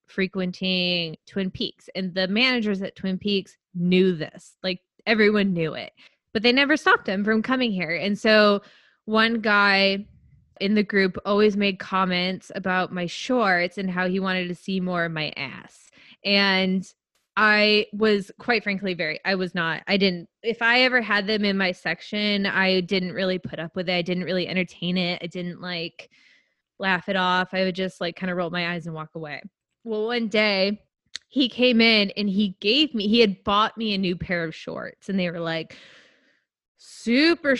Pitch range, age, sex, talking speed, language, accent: 180-210 Hz, 20-39, female, 190 wpm, English, American